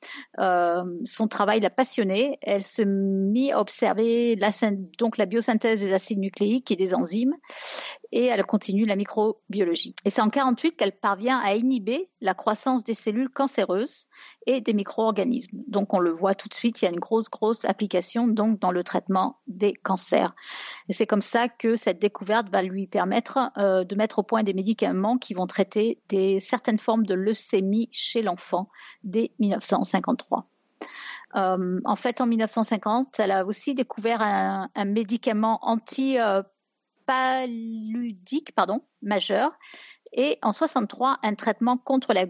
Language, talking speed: French, 160 wpm